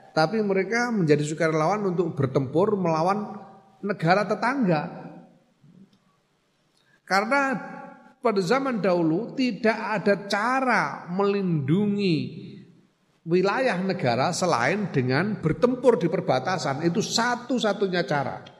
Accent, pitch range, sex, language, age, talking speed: native, 135-200 Hz, male, Indonesian, 50-69, 85 wpm